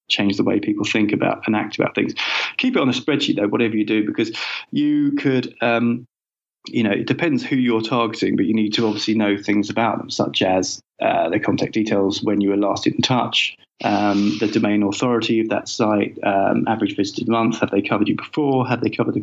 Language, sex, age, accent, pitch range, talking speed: English, male, 20-39, British, 100-120 Hz, 220 wpm